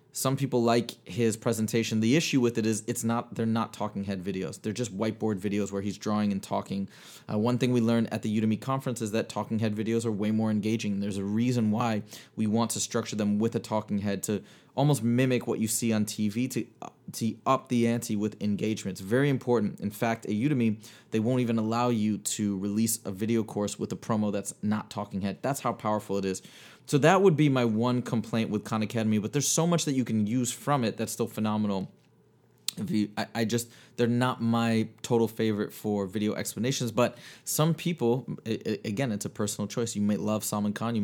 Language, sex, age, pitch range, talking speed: English, male, 20-39, 105-120 Hz, 220 wpm